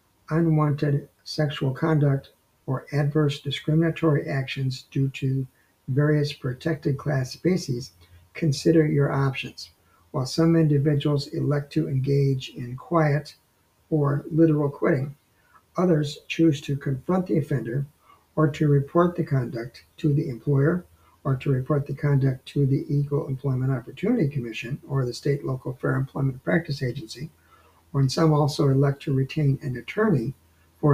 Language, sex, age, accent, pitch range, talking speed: English, male, 60-79, American, 130-155 Hz, 135 wpm